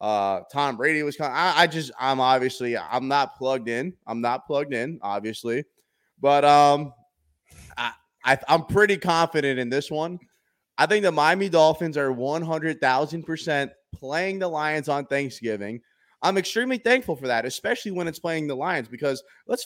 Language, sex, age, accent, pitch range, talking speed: English, male, 20-39, American, 125-160 Hz, 165 wpm